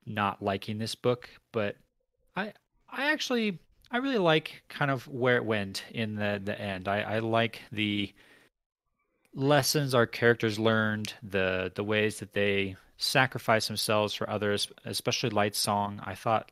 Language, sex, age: English, male, 30-49